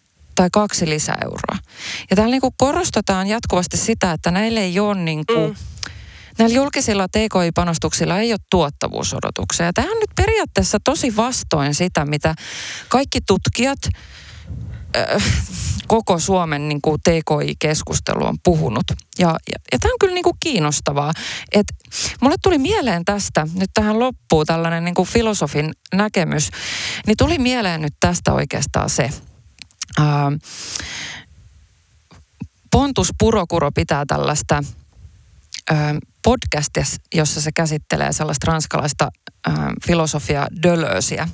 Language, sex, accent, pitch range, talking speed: Finnish, female, native, 150-210 Hz, 110 wpm